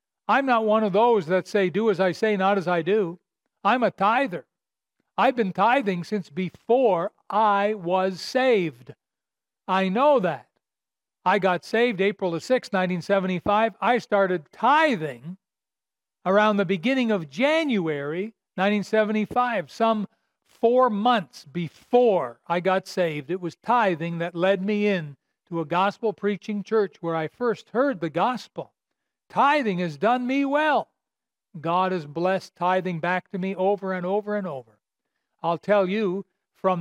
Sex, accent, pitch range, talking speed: male, American, 180-225 Hz, 150 wpm